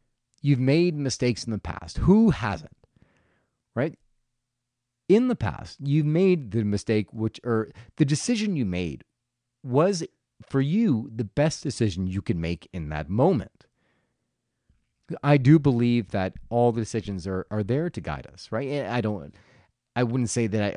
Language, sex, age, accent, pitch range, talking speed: English, male, 30-49, American, 100-140 Hz, 160 wpm